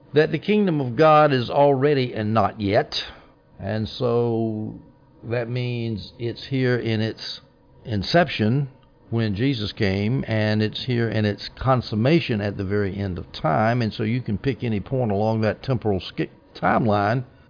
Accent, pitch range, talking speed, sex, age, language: American, 105-135 Hz, 155 wpm, male, 60-79, English